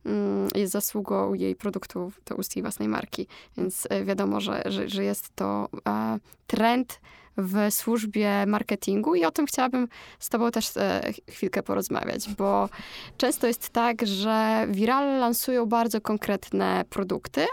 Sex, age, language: female, 20-39, Polish